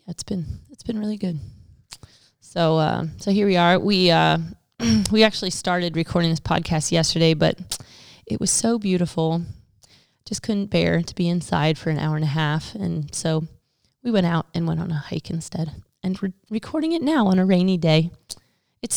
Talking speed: 185 wpm